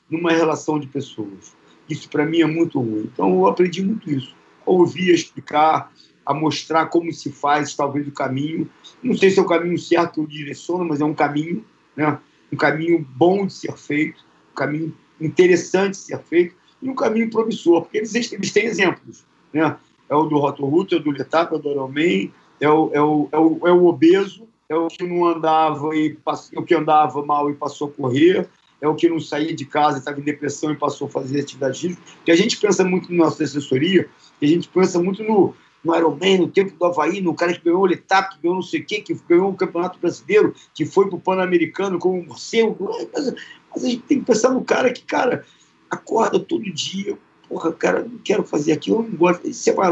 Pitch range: 150-185 Hz